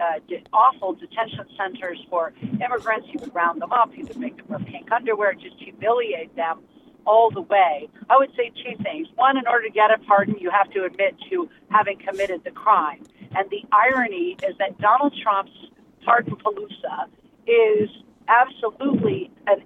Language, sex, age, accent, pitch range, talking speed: English, female, 50-69, American, 205-260 Hz, 175 wpm